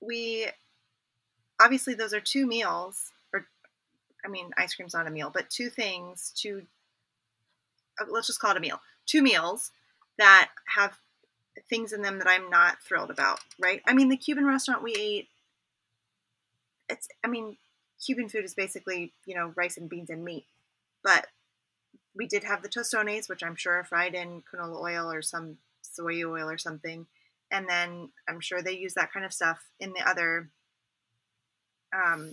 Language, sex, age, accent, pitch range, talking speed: English, female, 20-39, American, 170-230 Hz, 170 wpm